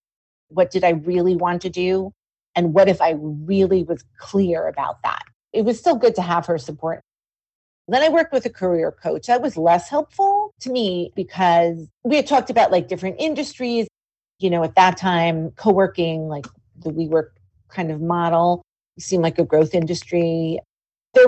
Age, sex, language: 40-59, female, English